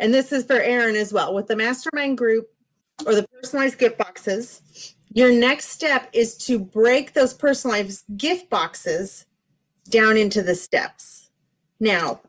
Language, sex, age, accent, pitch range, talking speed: English, female, 30-49, American, 190-250 Hz, 150 wpm